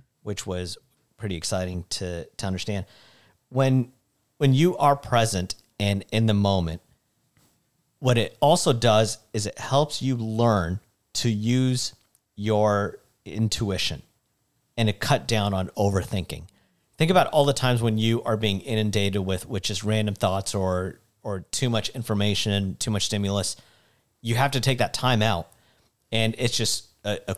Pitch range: 100-120 Hz